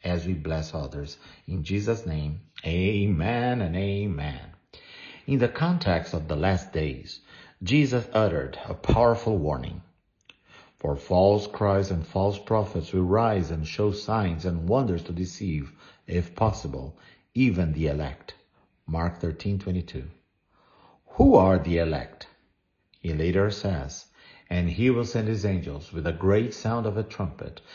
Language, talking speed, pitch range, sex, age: English, 140 wpm, 85-110 Hz, male, 50-69